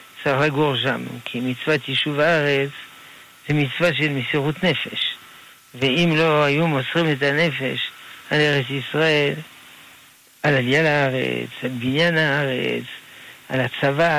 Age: 60-79